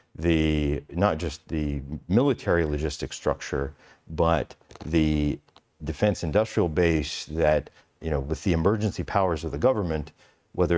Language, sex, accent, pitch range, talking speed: English, male, American, 75-90 Hz, 130 wpm